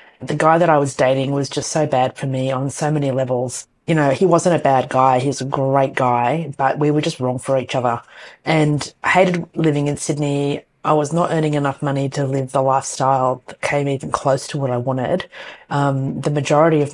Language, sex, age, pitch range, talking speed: English, female, 30-49, 135-155 Hz, 225 wpm